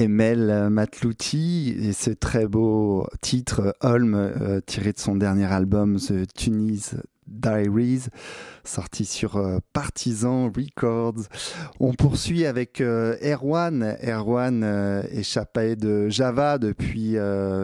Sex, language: male, French